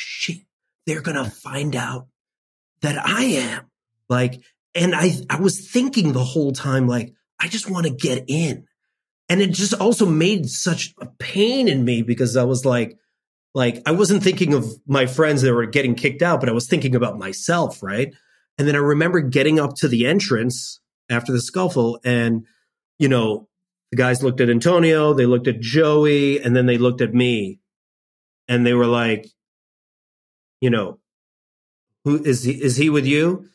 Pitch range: 125-160 Hz